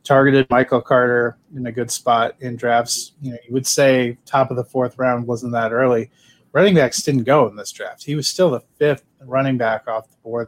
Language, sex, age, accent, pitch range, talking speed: English, male, 30-49, American, 115-130 Hz, 225 wpm